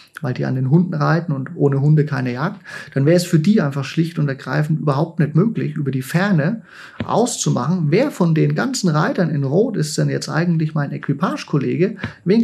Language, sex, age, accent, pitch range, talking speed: German, male, 30-49, German, 145-180 Hz, 200 wpm